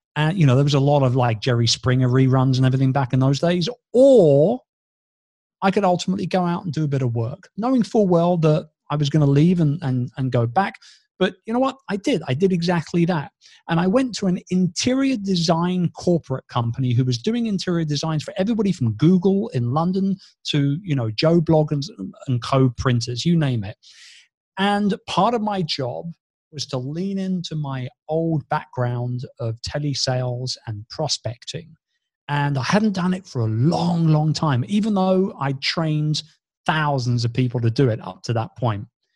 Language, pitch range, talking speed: English, 130-180 Hz, 190 wpm